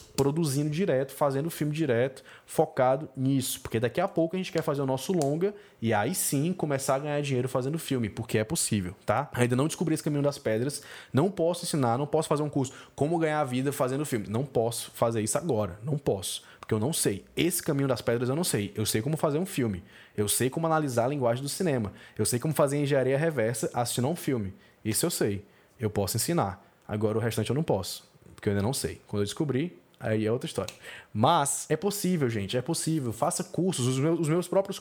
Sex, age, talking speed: male, 20-39, 220 wpm